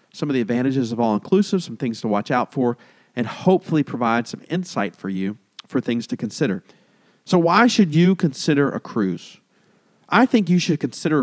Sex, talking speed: male, 185 wpm